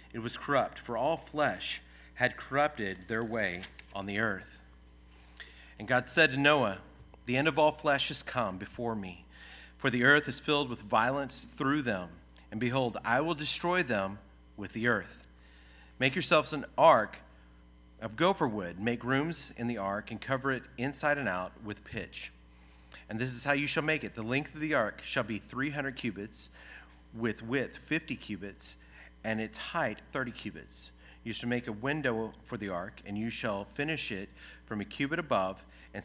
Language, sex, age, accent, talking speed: English, male, 40-59, American, 180 wpm